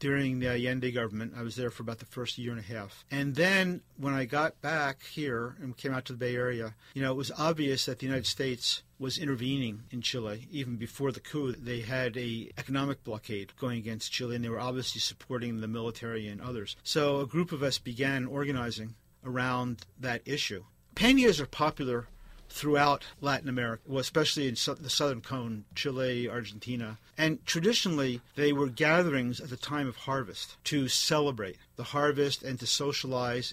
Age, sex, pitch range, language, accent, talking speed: 50-69, male, 120-145 Hz, English, American, 185 wpm